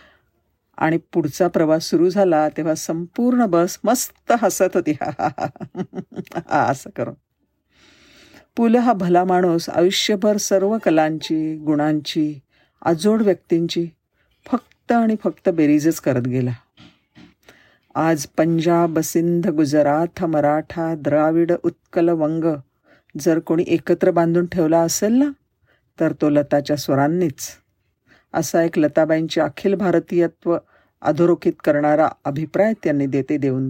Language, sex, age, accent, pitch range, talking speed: Marathi, female, 50-69, native, 150-185 Hz, 105 wpm